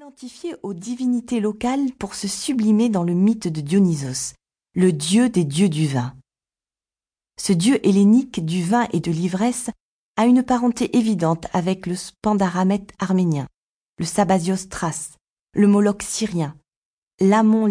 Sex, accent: female, French